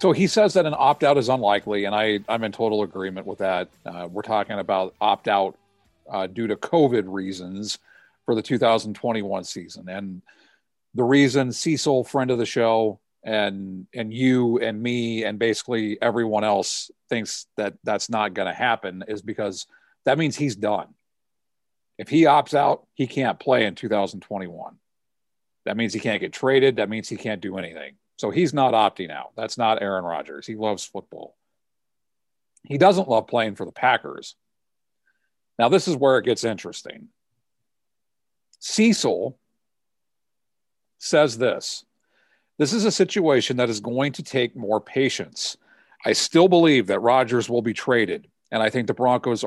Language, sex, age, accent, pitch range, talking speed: English, male, 40-59, American, 105-130 Hz, 160 wpm